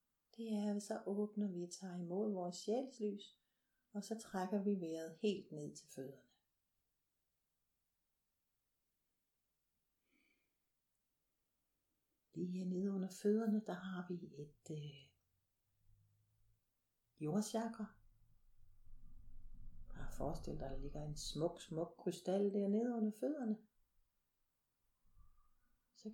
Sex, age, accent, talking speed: female, 60-79, native, 105 wpm